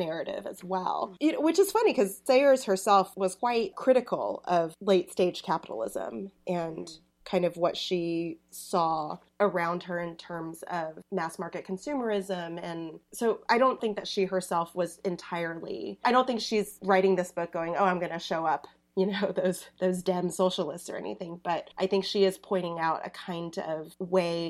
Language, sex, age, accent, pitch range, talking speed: English, female, 30-49, American, 170-200 Hz, 180 wpm